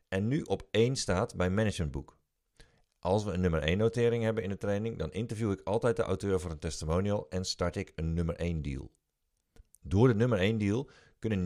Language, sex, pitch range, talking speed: Dutch, male, 80-115 Hz, 205 wpm